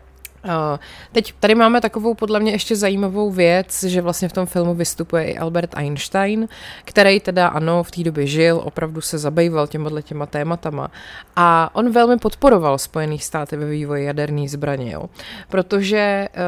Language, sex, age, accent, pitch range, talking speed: Czech, female, 30-49, native, 150-185 Hz, 155 wpm